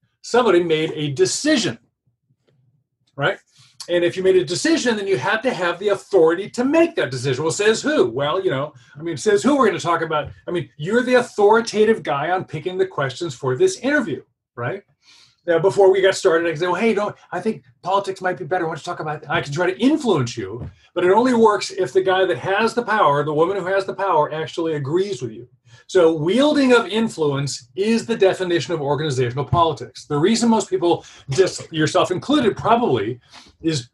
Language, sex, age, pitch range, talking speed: English, male, 40-59, 150-200 Hz, 210 wpm